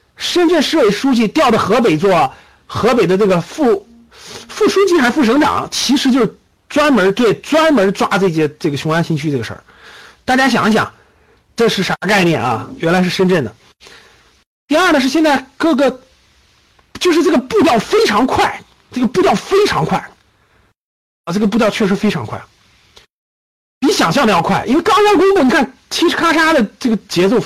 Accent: native